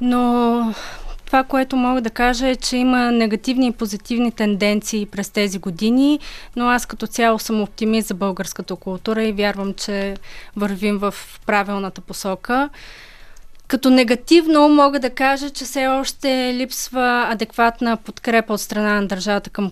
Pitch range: 205-245 Hz